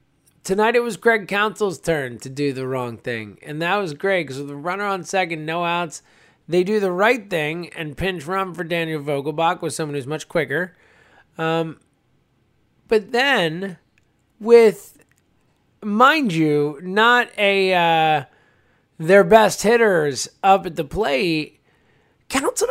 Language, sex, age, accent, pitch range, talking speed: English, male, 20-39, American, 150-235 Hz, 150 wpm